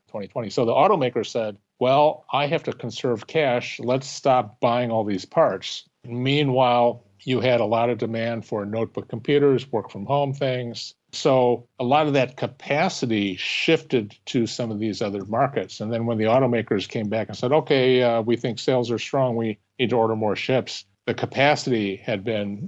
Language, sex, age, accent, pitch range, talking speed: English, male, 50-69, American, 110-135 Hz, 185 wpm